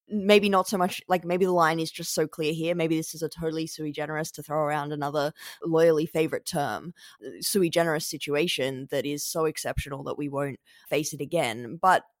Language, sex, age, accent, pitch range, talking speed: English, female, 20-39, Australian, 150-175 Hz, 200 wpm